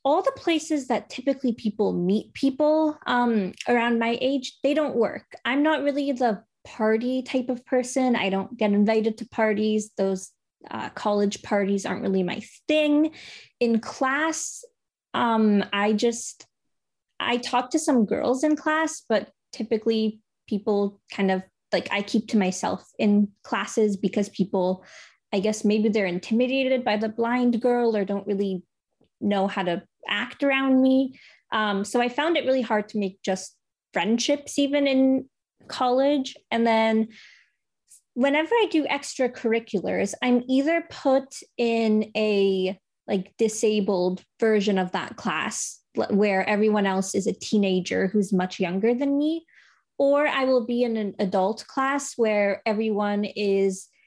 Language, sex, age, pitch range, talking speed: English, female, 20-39, 205-265 Hz, 145 wpm